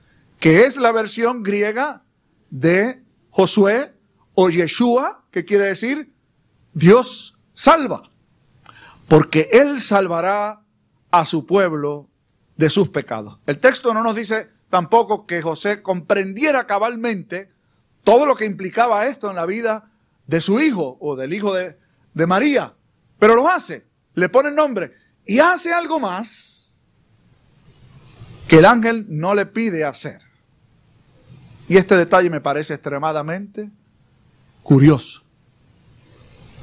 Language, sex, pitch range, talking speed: Spanish, male, 140-220 Hz, 125 wpm